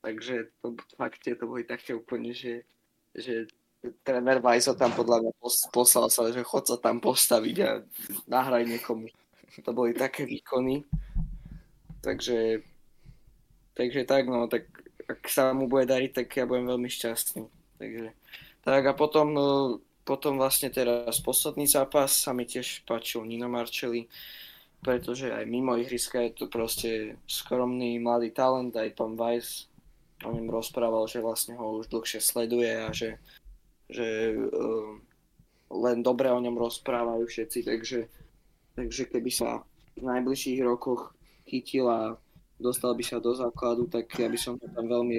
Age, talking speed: 20-39, 150 wpm